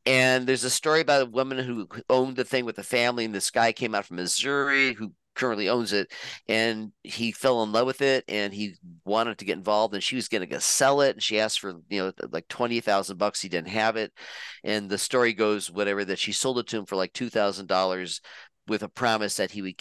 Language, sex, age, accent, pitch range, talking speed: English, male, 40-59, American, 100-125 Hz, 235 wpm